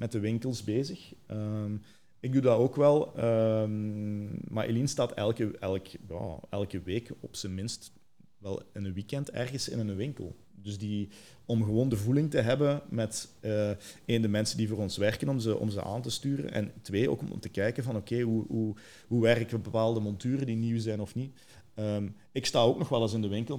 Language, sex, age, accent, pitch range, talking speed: Dutch, male, 40-59, Dutch, 100-115 Hz, 215 wpm